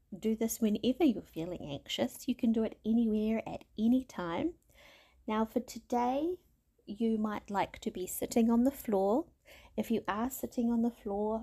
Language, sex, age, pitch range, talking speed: English, female, 30-49, 200-250 Hz, 175 wpm